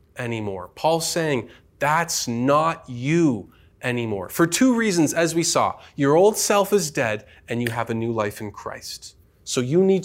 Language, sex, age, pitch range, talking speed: English, male, 20-39, 110-155 Hz, 175 wpm